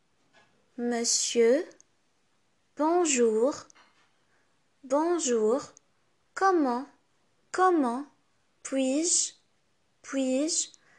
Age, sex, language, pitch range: 20-39, female, English, 240-315 Hz